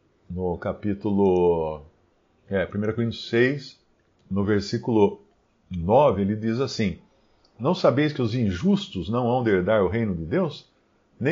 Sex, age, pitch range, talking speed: male, 50-69, 100-140 Hz, 125 wpm